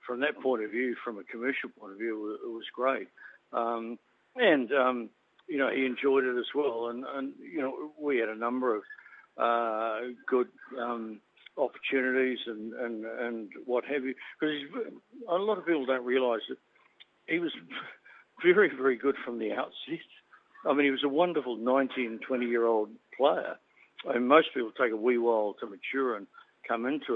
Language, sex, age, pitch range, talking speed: English, male, 60-79, 115-150 Hz, 175 wpm